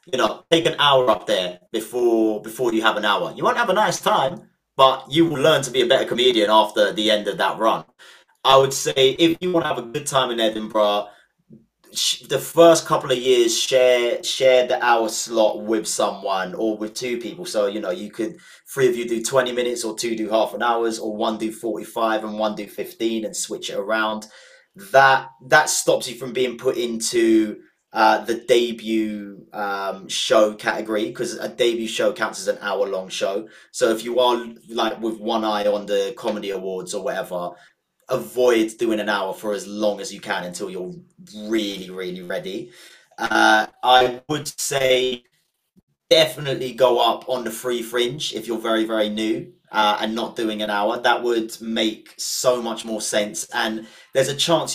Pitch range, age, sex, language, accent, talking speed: 110-130 Hz, 30-49, male, English, British, 195 wpm